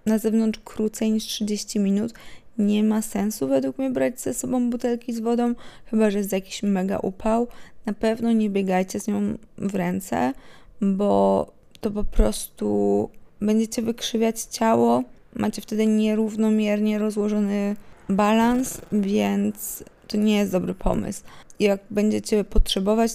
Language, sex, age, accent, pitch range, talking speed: Polish, female, 20-39, native, 195-225 Hz, 135 wpm